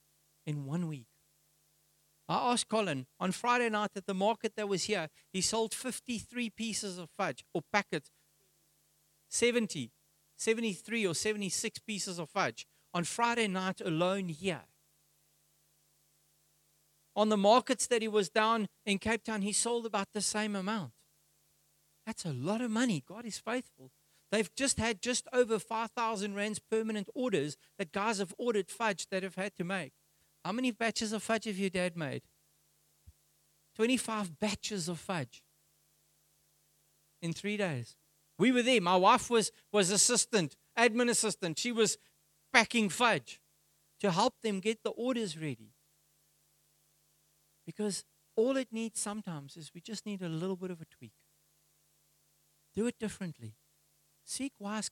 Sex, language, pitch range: male, English, 160-225 Hz